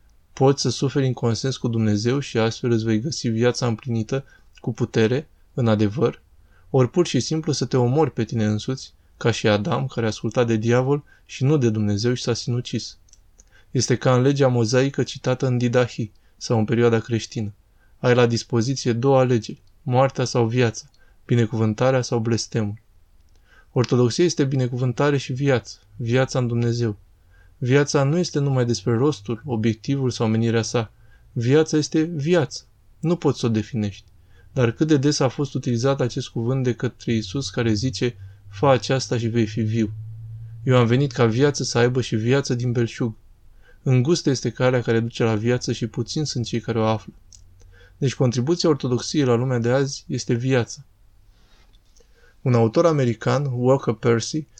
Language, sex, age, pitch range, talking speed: Romanian, male, 20-39, 110-130 Hz, 165 wpm